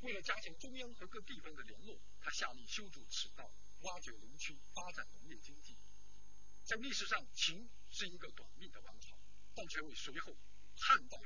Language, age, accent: Chinese, 50-69, native